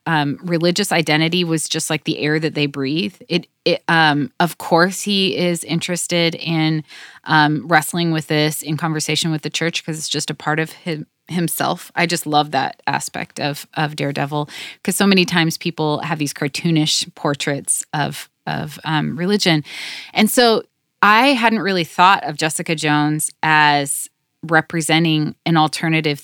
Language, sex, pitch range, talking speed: English, female, 155-200 Hz, 160 wpm